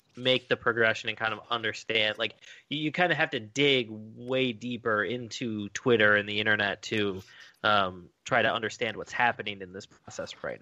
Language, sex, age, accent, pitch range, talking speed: English, male, 20-39, American, 105-120 Hz, 180 wpm